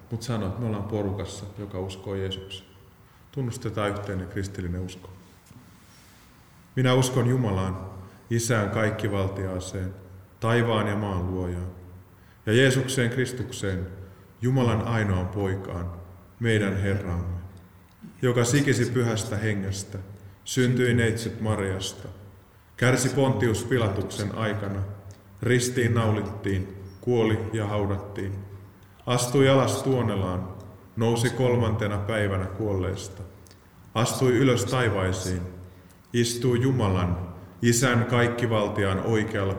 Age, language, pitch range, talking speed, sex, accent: 30-49, Finnish, 95-115 Hz, 90 wpm, male, native